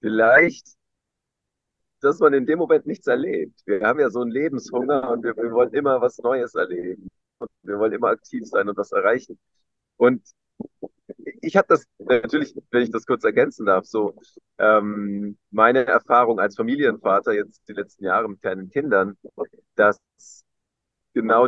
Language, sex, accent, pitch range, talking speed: German, male, German, 105-145 Hz, 160 wpm